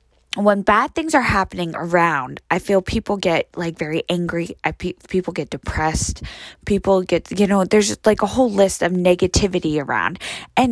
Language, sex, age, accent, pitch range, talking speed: English, female, 20-39, American, 175-230 Hz, 175 wpm